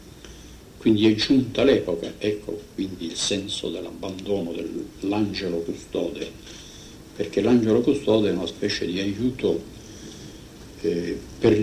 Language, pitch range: Italian, 95-115 Hz